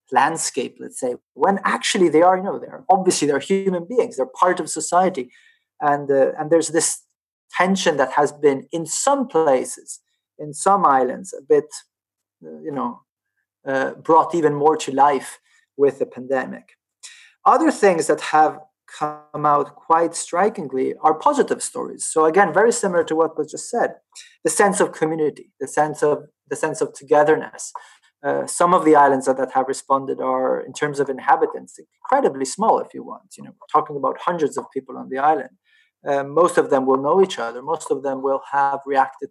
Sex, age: male, 30-49